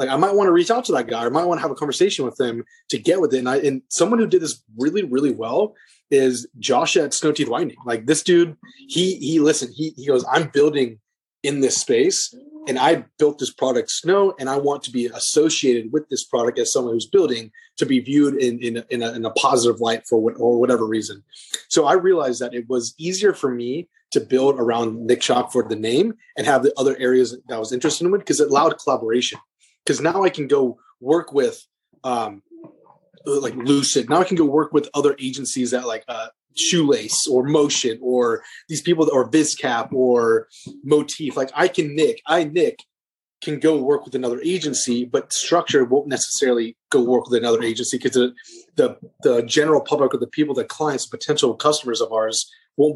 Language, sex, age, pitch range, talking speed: English, male, 30-49, 125-175 Hz, 215 wpm